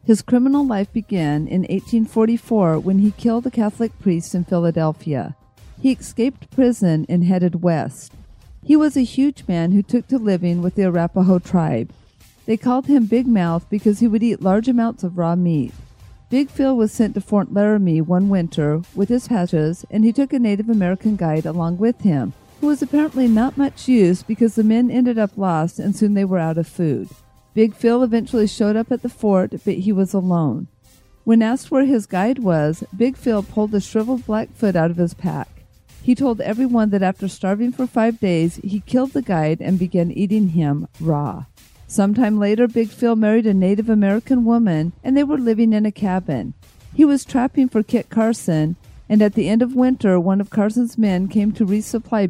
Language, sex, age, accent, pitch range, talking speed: English, female, 50-69, American, 175-235 Hz, 195 wpm